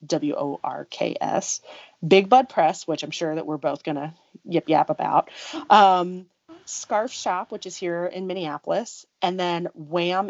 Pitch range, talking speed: 170-245 Hz, 145 wpm